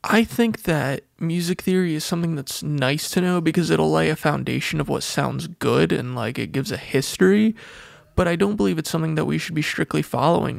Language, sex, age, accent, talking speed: English, male, 20-39, American, 215 wpm